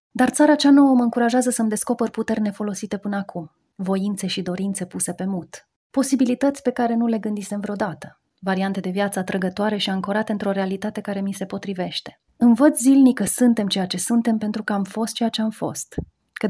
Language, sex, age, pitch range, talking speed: Romanian, female, 30-49, 190-230 Hz, 195 wpm